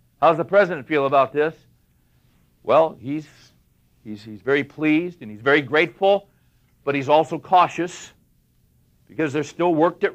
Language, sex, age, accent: English, male, 60-79, American